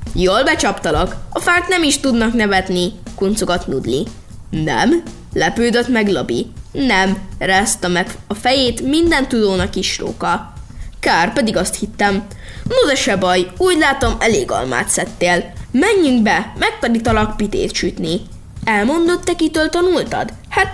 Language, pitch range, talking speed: Hungarian, 200-295 Hz, 130 wpm